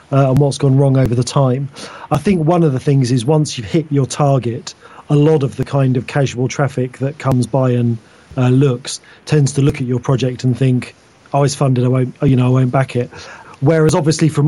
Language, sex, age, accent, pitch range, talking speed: English, male, 30-49, British, 130-150 Hz, 235 wpm